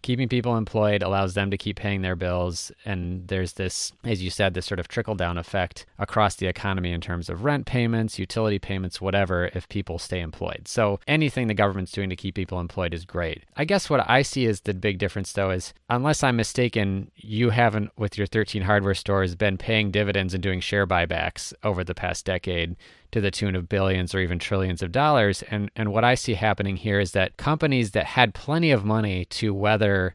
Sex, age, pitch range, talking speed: male, 30-49, 95-110 Hz, 215 wpm